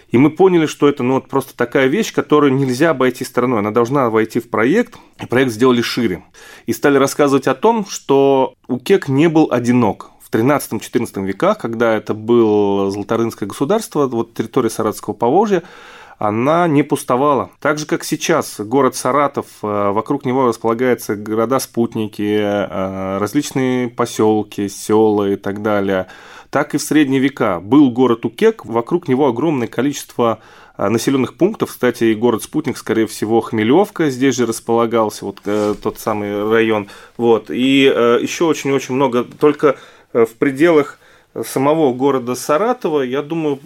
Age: 20-39